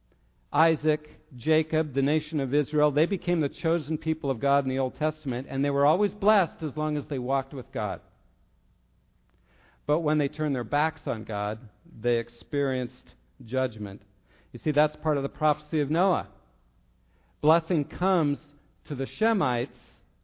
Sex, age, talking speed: male, 50-69, 160 wpm